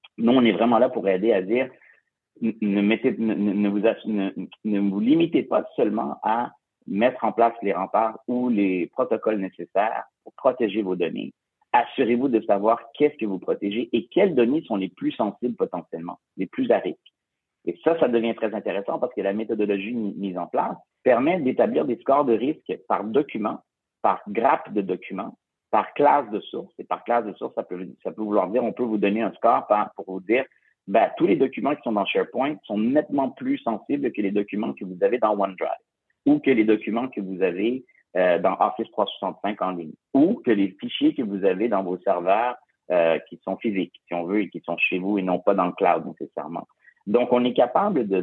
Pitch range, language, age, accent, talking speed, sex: 100-125 Hz, French, 50-69, French, 205 wpm, male